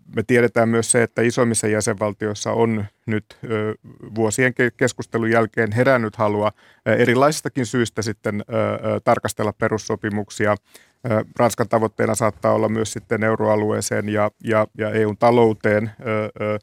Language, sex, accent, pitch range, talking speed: Finnish, male, native, 110-120 Hz, 100 wpm